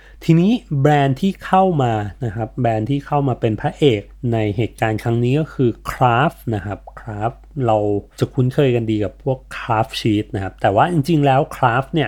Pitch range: 115-155 Hz